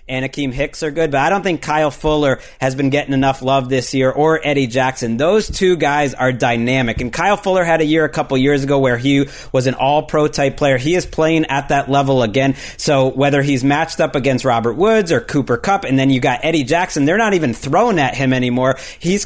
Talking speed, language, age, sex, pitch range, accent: 235 wpm, English, 30-49, male, 130-165 Hz, American